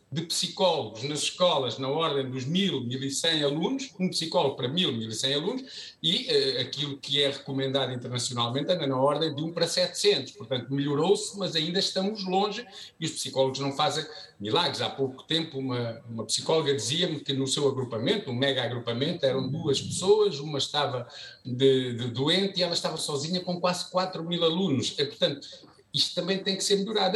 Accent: Brazilian